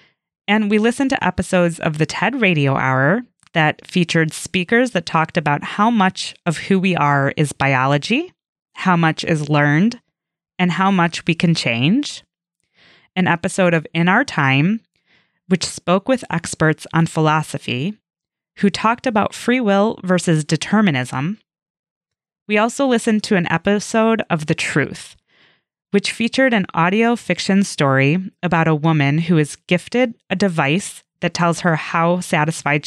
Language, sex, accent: English, female, American